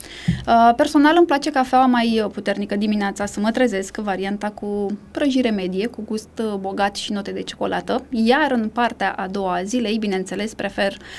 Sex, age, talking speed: female, 20-39, 155 wpm